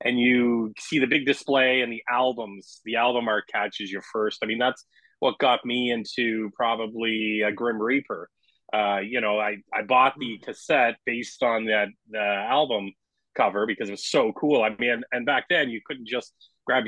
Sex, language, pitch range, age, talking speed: male, English, 105-125 Hz, 30-49, 195 wpm